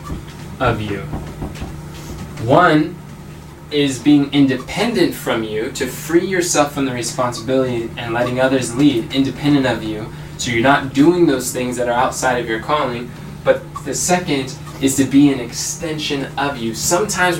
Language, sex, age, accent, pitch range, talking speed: English, male, 10-29, American, 130-160 Hz, 150 wpm